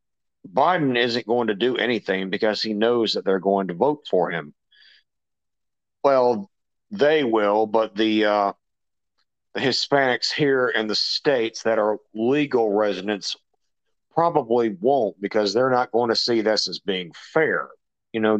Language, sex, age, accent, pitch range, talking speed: English, male, 50-69, American, 110-145 Hz, 145 wpm